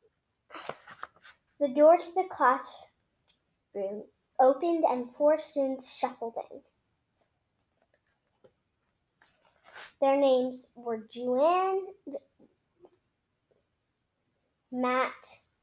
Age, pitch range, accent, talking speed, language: 10-29, 245-310 Hz, American, 60 wpm, English